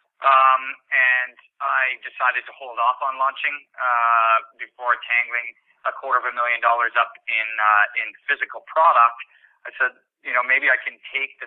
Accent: American